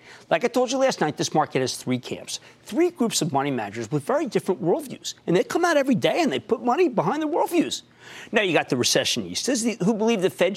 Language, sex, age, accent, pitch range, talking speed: English, male, 50-69, American, 145-245 Hz, 240 wpm